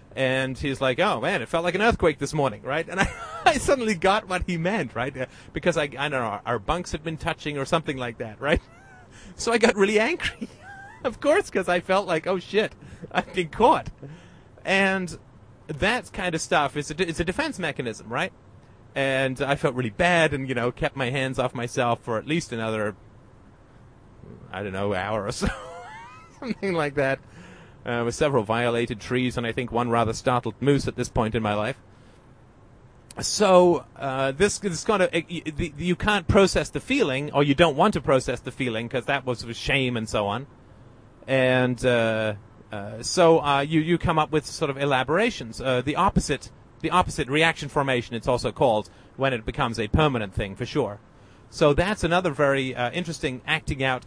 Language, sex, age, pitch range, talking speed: English, male, 30-49, 120-170 Hz, 200 wpm